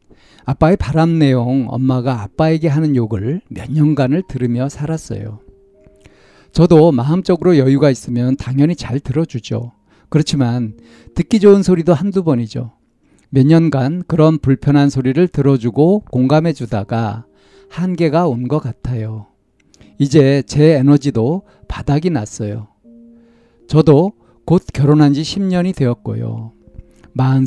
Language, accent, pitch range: Korean, native, 115-155 Hz